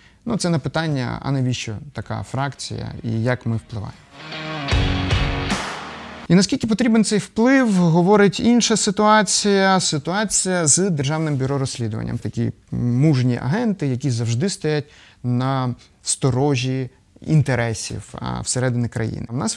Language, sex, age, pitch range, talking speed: Ukrainian, male, 30-49, 120-160 Hz, 115 wpm